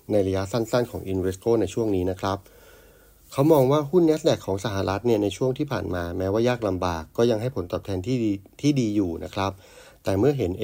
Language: Thai